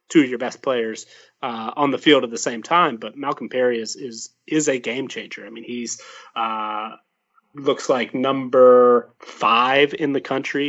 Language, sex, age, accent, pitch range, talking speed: English, male, 30-49, American, 115-140 Hz, 185 wpm